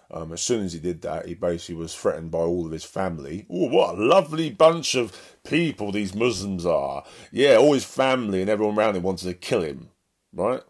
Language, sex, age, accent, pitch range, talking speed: English, male, 30-49, British, 90-115 Hz, 220 wpm